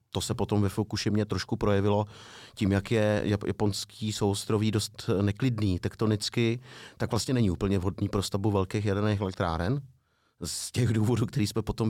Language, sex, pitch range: Czech, male, 100-115 Hz